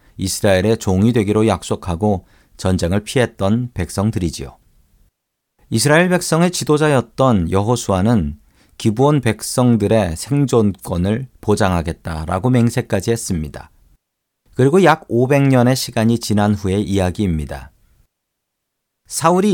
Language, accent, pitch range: Korean, native, 95-130 Hz